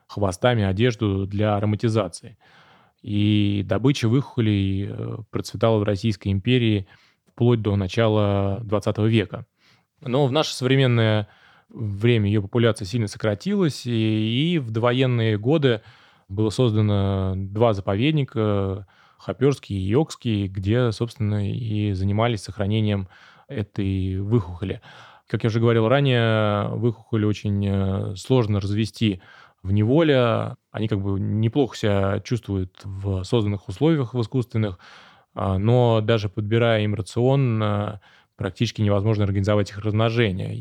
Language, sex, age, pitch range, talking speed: Russian, male, 20-39, 100-120 Hz, 110 wpm